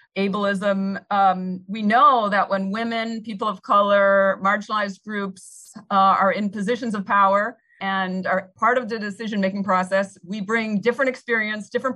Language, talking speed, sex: English, 155 wpm, female